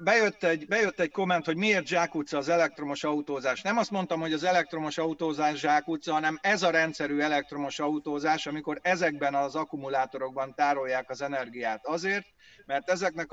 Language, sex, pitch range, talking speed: Hungarian, male, 145-175 Hz, 160 wpm